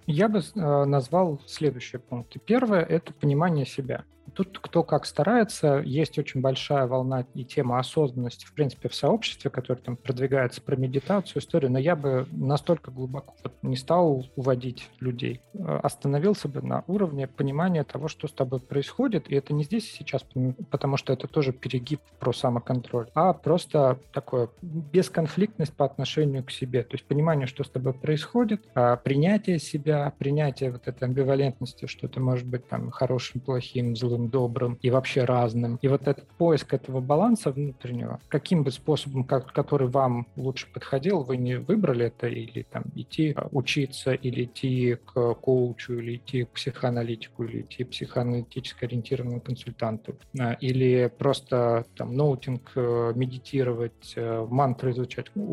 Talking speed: 150 wpm